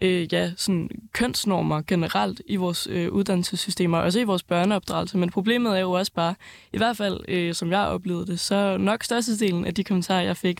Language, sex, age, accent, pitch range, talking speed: Danish, female, 20-39, native, 180-200 Hz, 205 wpm